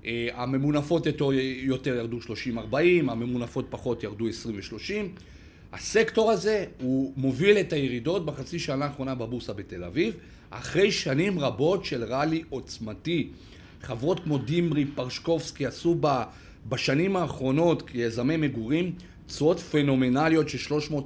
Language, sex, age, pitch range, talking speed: Hebrew, male, 40-59, 120-165 Hz, 110 wpm